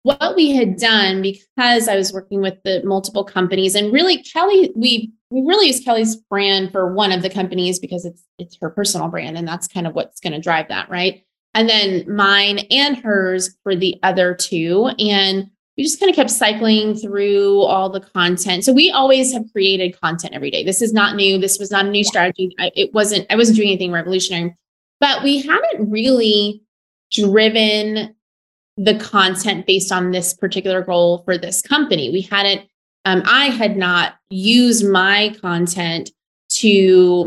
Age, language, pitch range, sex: 20-39, English, 185-220 Hz, female